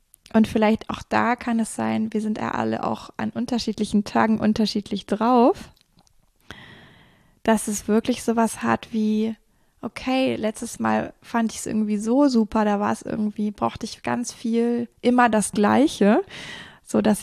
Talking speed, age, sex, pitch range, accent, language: 155 wpm, 20-39, female, 195-225 Hz, German, German